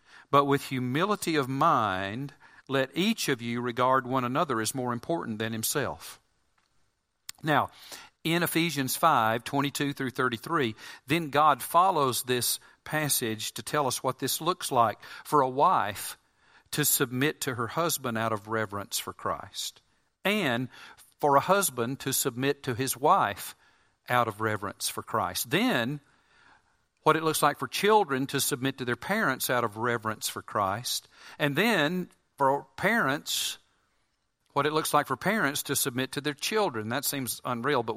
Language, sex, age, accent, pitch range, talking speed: English, male, 50-69, American, 120-145 Hz, 155 wpm